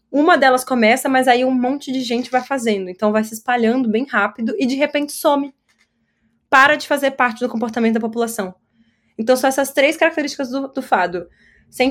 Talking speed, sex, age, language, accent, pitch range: 190 wpm, female, 20-39, Portuguese, Brazilian, 220-280 Hz